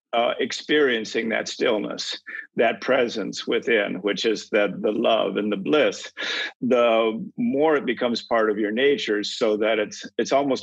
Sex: male